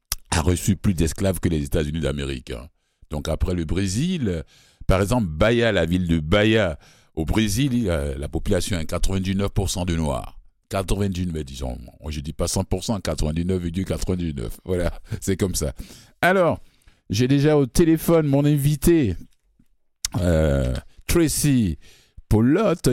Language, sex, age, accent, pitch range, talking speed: French, male, 60-79, French, 85-125 Hz, 135 wpm